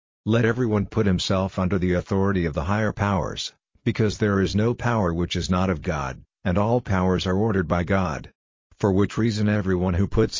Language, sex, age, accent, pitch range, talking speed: English, male, 50-69, American, 90-110 Hz, 195 wpm